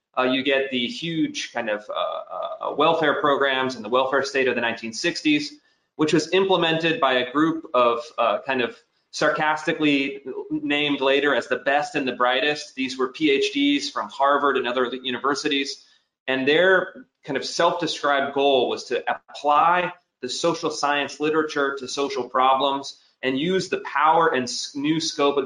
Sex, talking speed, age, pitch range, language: male, 165 wpm, 30-49, 130-160 Hz, English